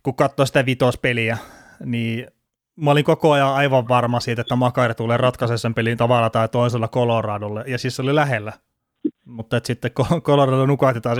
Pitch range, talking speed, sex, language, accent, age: 115-135 Hz, 165 wpm, male, Finnish, native, 30-49